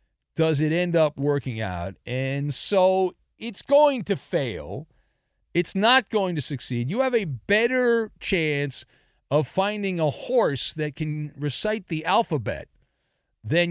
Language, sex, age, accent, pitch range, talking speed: English, male, 50-69, American, 145-220 Hz, 140 wpm